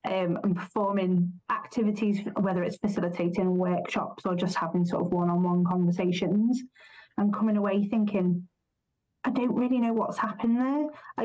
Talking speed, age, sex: 140 wpm, 30-49, female